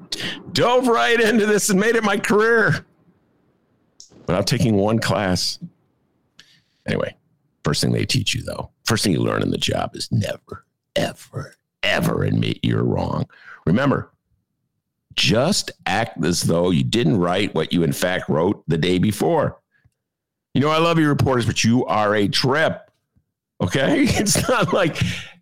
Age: 50-69